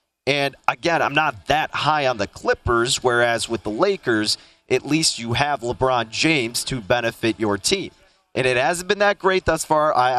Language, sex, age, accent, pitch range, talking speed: English, male, 30-49, American, 120-155 Hz, 190 wpm